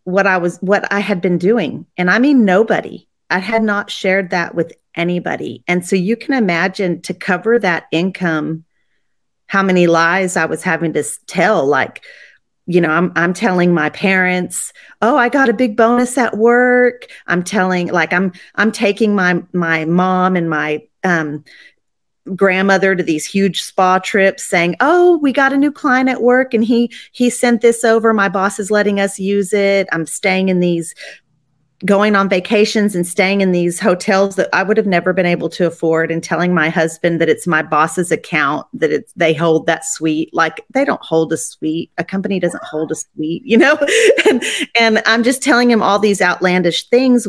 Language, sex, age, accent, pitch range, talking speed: English, female, 40-59, American, 170-225 Hz, 195 wpm